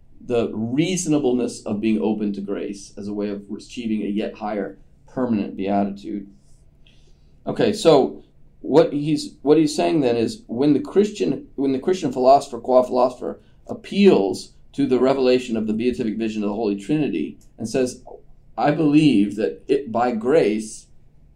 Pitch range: 100-130 Hz